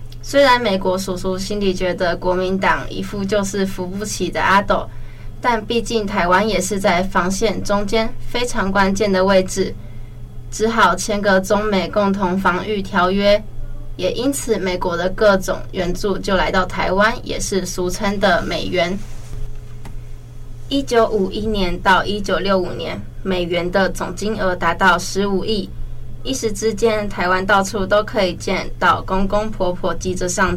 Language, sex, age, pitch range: Chinese, female, 20-39, 170-205 Hz